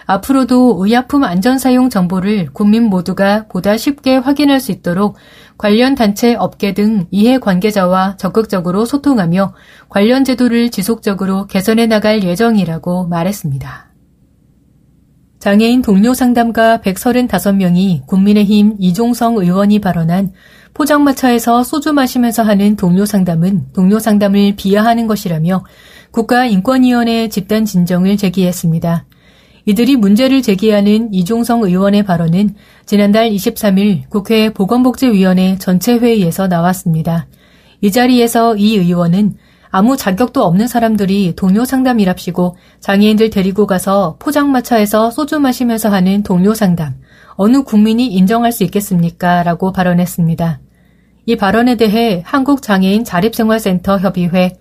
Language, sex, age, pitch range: Korean, female, 30-49, 185-230 Hz